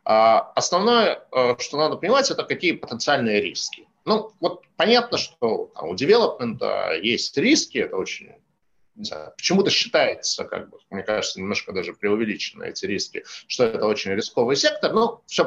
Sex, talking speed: male, 150 wpm